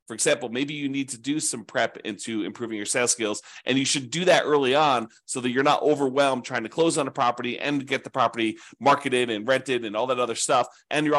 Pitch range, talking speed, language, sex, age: 120-155 Hz, 245 wpm, English, male, 30-49